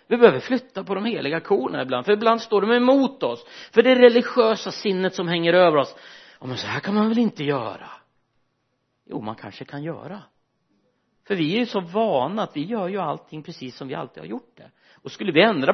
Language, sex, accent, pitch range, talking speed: Swedish, male, native, 145-225 Hz, 220 wpm